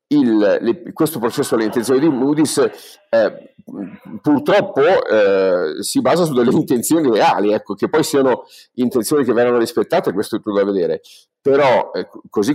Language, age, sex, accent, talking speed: Italian, 50-69, male, native, 160 wpm